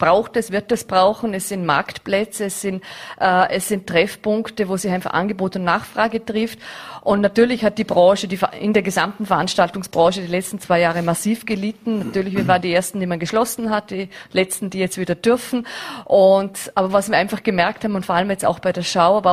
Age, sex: 30-49, female